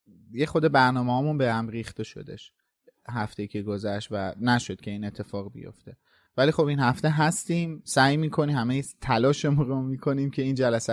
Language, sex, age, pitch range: Persian, male, 30-49, 115-140 Hz